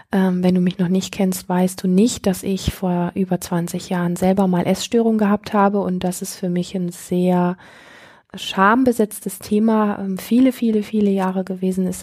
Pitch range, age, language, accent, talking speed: 185-210 Hz, 20-39, German, German, 175 wpm